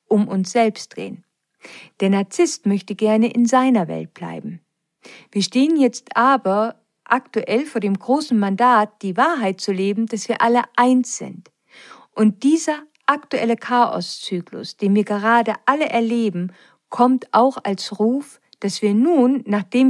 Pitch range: 195-250 Hz